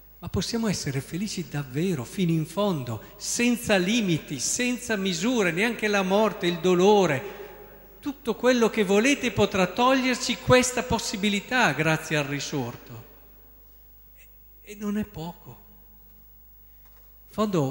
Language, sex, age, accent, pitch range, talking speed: Italian, male, 50-69, native, 145-200 Hz, 110 wpm